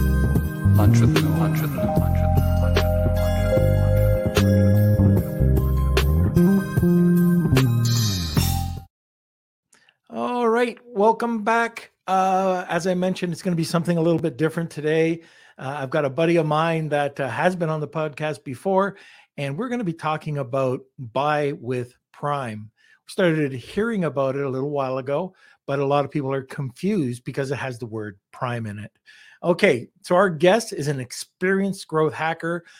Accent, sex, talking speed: American, male, 155 wpm